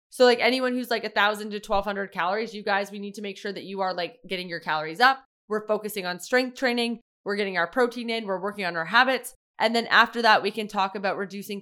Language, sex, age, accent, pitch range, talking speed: English, female, 20-39, American, 190-235 Hz, 250 wpm